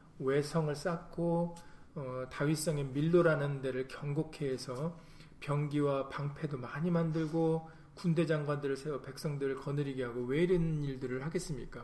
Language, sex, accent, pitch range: Korean, male, native, 130-165 Hz